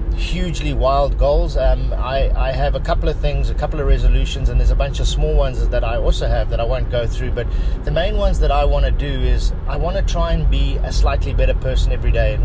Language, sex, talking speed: English, male, 260 wpm